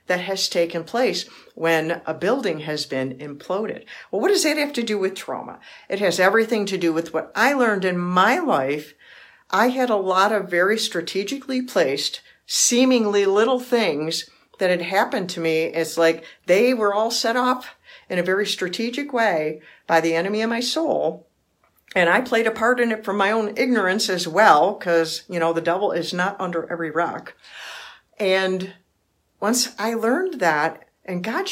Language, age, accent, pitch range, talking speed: English, 50-69, American, 165-215 Hz, 180 wpm